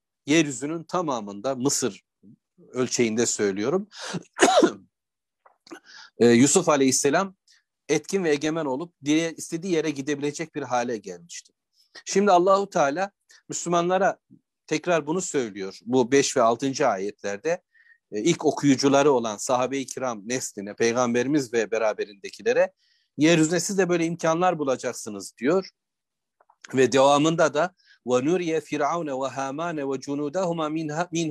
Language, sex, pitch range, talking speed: Turkish, male, 130-170 Hz, 100 wpm